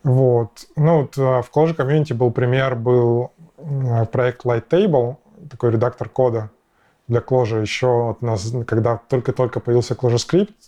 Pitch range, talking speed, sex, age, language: 115-135 Hz, 135 wpm, male, 20-39, Russian